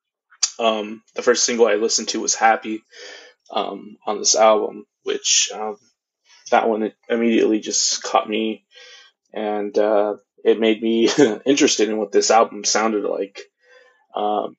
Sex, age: male, 20-39